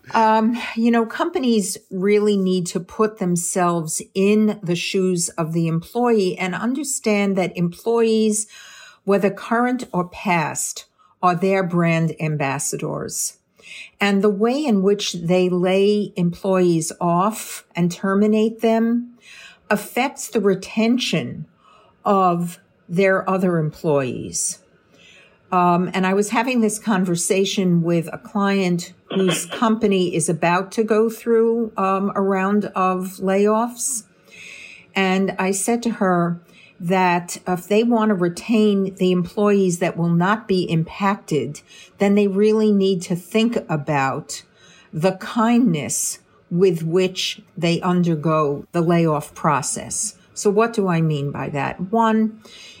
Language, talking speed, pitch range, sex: English, 125 wpm, 175-215 Hz, female